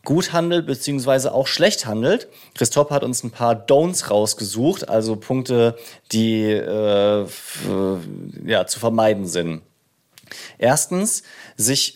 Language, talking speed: German, 120 wpm